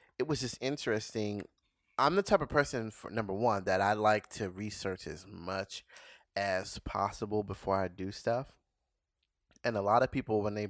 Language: English